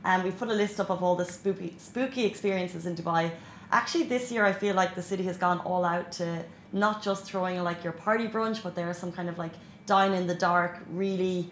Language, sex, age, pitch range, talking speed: Arabic, female, 20-39, 175-215 Hz, 245 wpm